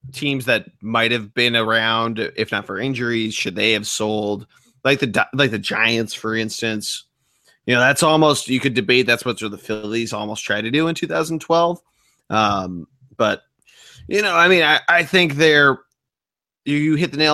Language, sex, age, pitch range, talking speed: English, male, 30-49, 110-145 Hz, 190 wpm